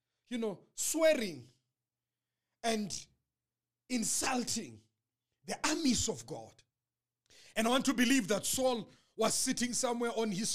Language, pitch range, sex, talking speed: English, 235-350 Hz, male, 120 wpm